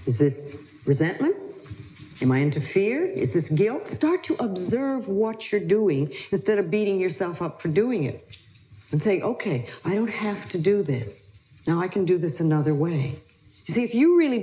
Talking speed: 185 wpm